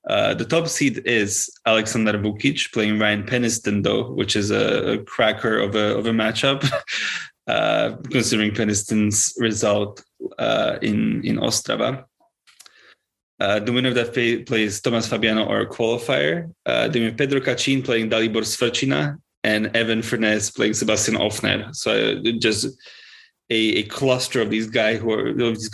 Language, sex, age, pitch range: English, male, 20-39, 105-125 Hz